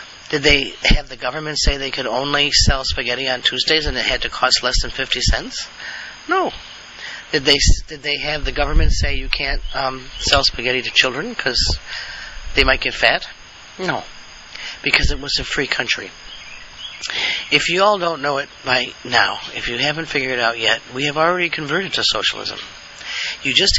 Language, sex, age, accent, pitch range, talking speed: English, male, 40-59, American, 115-135 Hz, 185 wpm